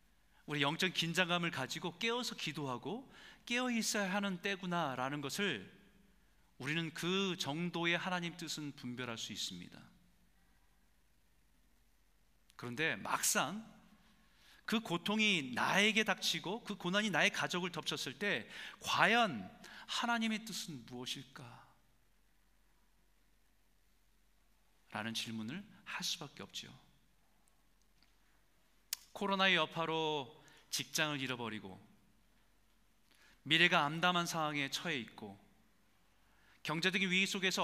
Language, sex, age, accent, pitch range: Korean, male, 40-59, native, 125-200 Hz